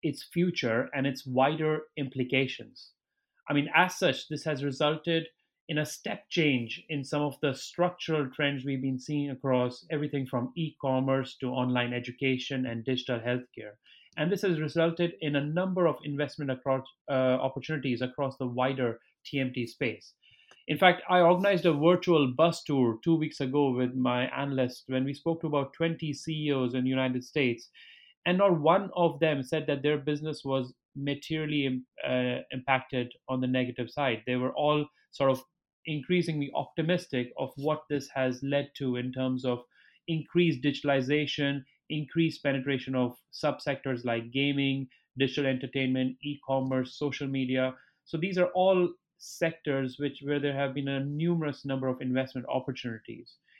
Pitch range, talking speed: 130-155 Hz, 155 wpm